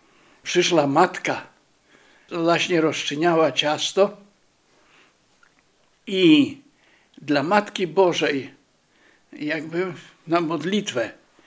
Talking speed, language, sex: 65 wpm, Polish, male